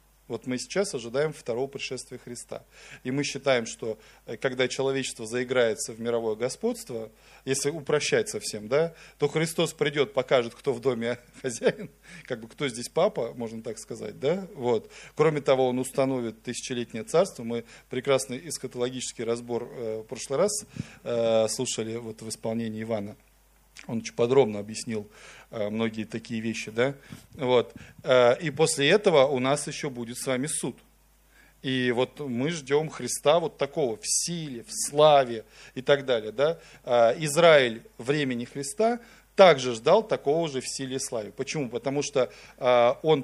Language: Russian